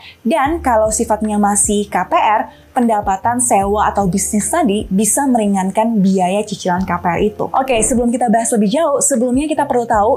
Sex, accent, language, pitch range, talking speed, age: female, native, Indonesian, 205-245 Hz, 160 wpm, 20-39